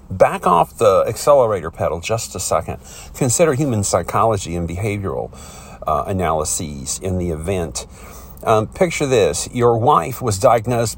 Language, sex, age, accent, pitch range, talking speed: English, male, 50-69, American, 90-130 Hz, 135 wpm